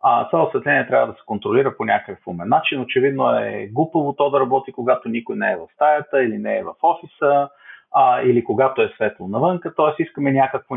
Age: 40-59